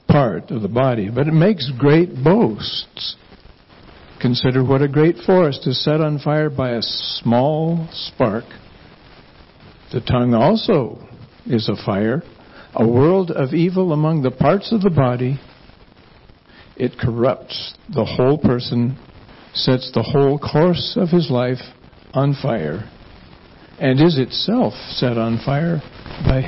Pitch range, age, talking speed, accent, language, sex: 120-160 Hz, 60-79, 135 wpm, American, English, male